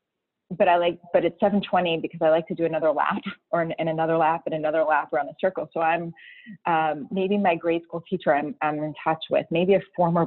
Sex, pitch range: female, 160-205 Hz